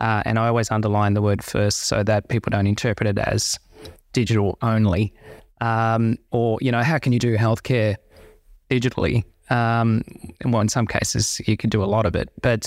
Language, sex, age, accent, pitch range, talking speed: English, male, 20-39, Australian, 105-120 Hz, 190 wpm